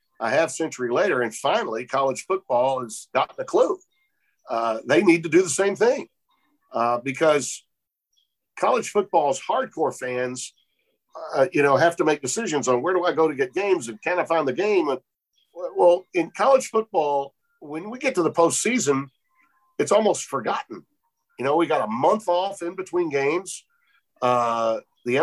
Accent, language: American, English